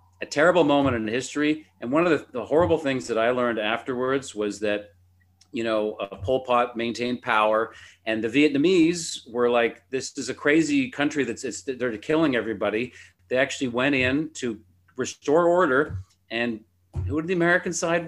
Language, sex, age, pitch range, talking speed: English, male, 40-59, 95-125 Hz, 175 wpm